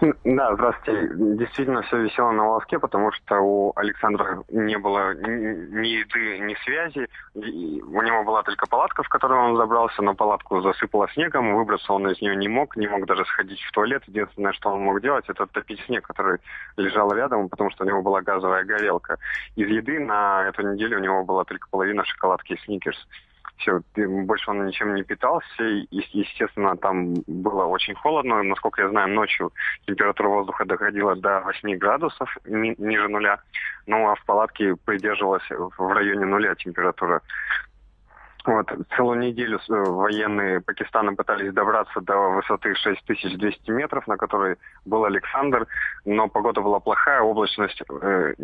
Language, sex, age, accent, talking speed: Russian, male, 20-39, native, 155 wpm